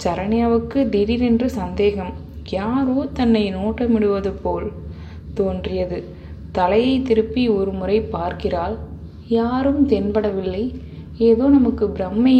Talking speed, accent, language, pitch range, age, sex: 85 wpm, native, Tamil, 190-235 Hz, 20-39, female